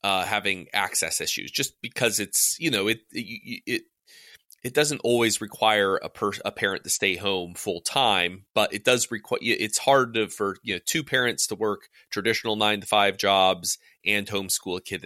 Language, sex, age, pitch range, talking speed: English, male, 30-49, 95-120 Hz, 190 wpm